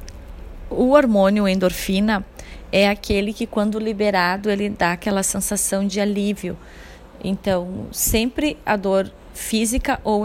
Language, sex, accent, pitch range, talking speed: English, female, Brazilian, 200-225 Hz, 115 wpm